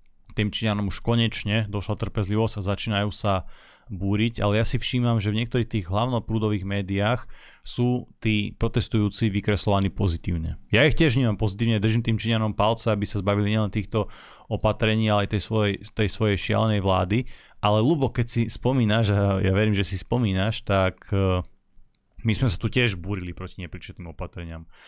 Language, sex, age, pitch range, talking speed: Slovak, male, 30-49, 95-110 Hz, 170 wpm